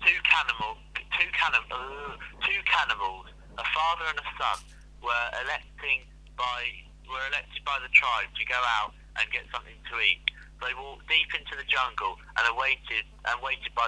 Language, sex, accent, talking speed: English, male, British, 165 wpm